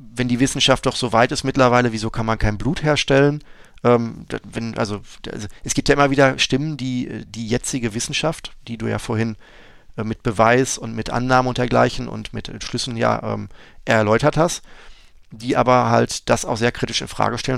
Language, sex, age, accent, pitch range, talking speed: German, male, 30-49, German, 110-125 Hz, 190 wpm